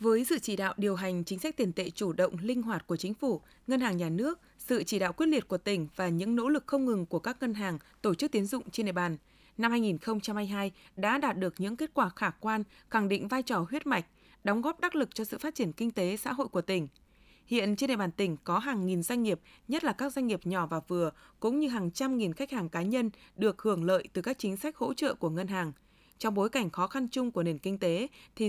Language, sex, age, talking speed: Vietnamese, female, 20-39, 265 wpm